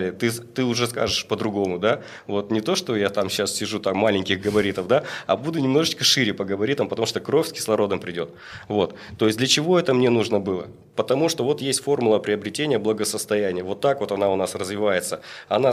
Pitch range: 105-130 Hz